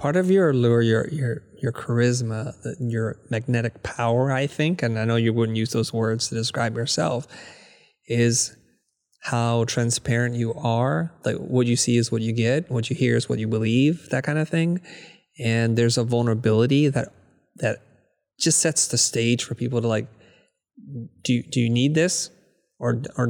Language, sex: English, male